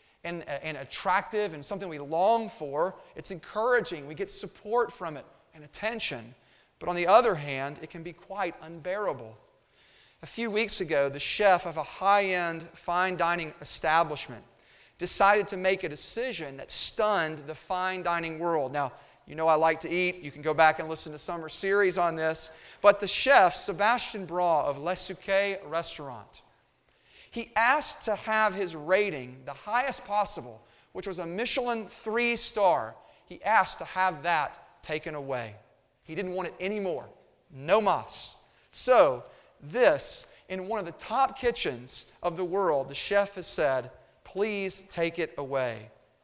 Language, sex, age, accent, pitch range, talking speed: English, male, 30-49, American, 160-225 Hz, 160 wpm